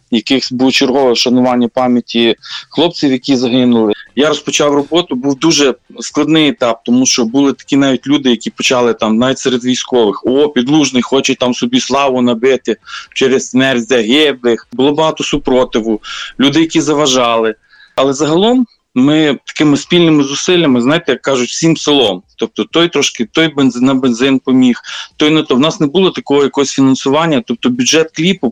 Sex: male